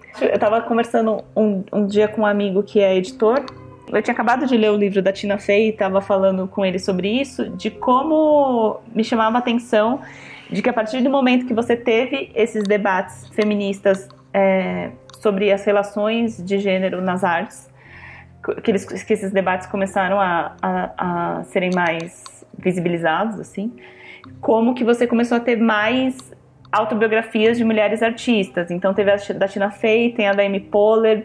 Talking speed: 175 wpm